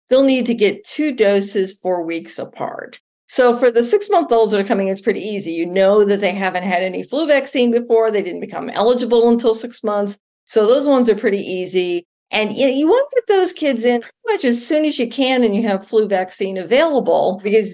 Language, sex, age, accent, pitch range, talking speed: English, female, 50-69, American, 195-255 Hz, 220 wpm